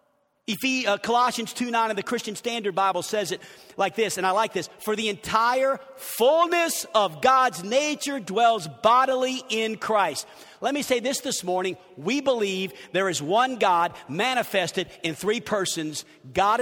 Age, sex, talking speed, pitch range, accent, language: 50-69, male, 170 wpm, 210-275 Hz, American, English